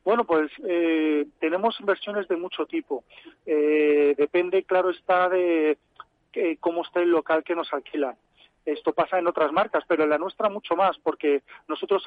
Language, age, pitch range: Spanish, 40-59, 150-185 Hz